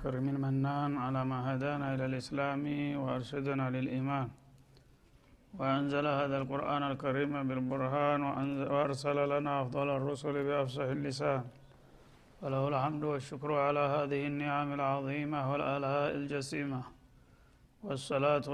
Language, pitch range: Amharic, 140-145 Hz